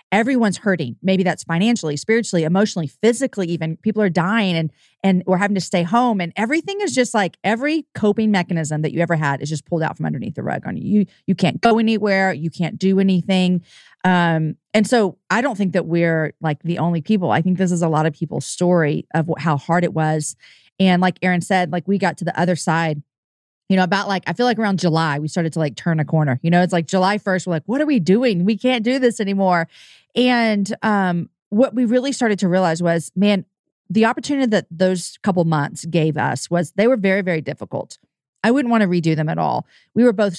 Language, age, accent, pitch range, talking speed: English, 40-59, American, 165-205 Hz, 230 wpm